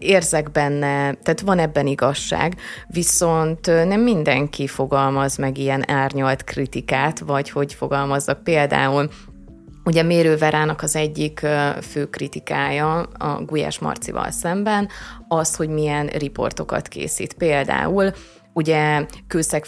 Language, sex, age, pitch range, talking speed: Hungarian, female, 30-49, 140-165 Hz, 115 wpm